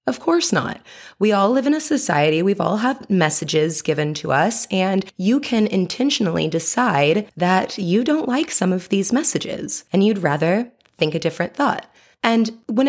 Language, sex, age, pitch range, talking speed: English, female, 20-39, 165-240 Hz, 175 wpm